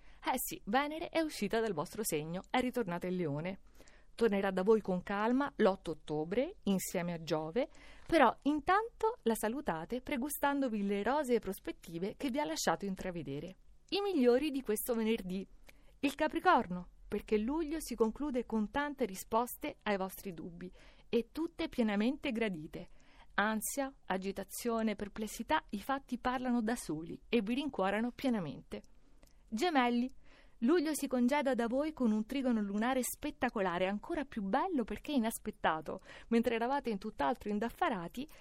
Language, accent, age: Italian, native, 50-69